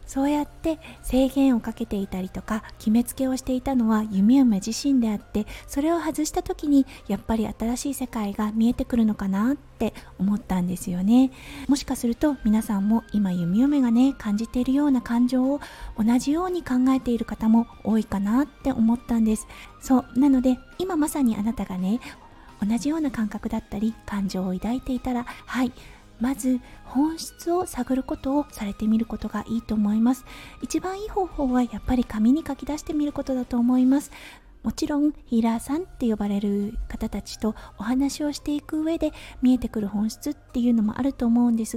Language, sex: Japanese, female